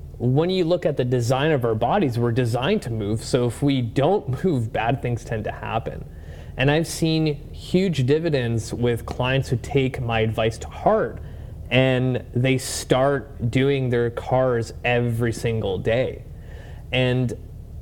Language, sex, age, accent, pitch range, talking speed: English, male, 30-49, American, 110-140 Hz, 155 wpm